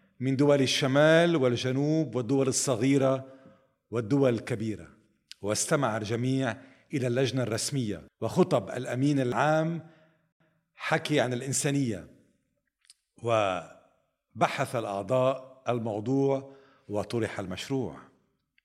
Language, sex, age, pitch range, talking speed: Arabic, male, 50-69, 105-135 Hz, 75 wpm